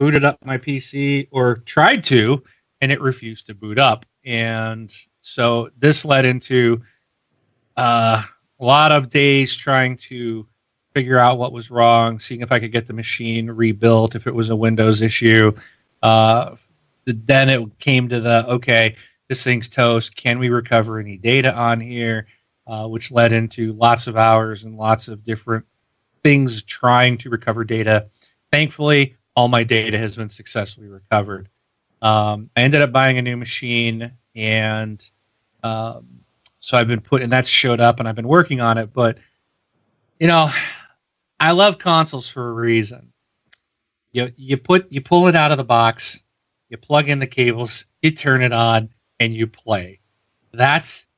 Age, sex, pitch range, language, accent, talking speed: 30-49, male, 110-130 Hz, English, American, 165 wpm